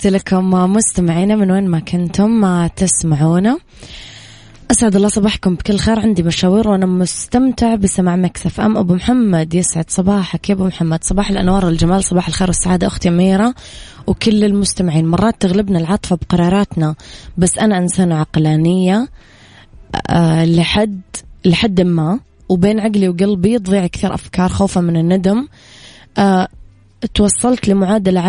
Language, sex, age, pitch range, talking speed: Arabic, female, 20-39, 175-205 Hz, 130 wpm